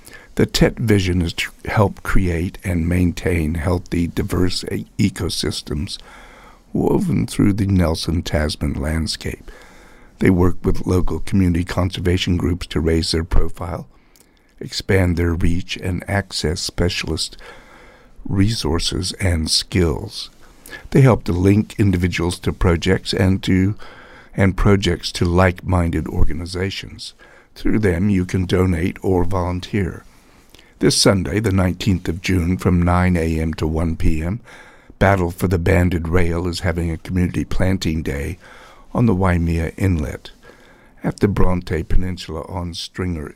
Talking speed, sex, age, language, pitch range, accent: 125 wpm, male, 60-79, English, 85-95 Hz, American